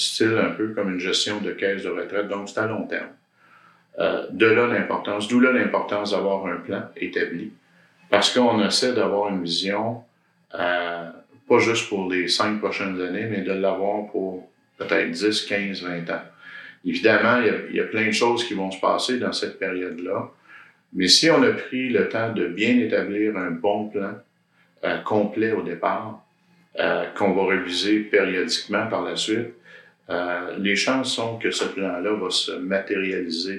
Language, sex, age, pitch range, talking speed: French, male, 50-69, 95-110 Hz, 175 wpm